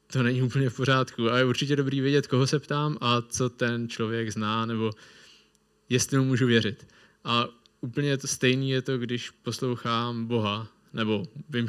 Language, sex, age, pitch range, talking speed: Czech, male, 20-39, 120-140 Hz, 175 wpm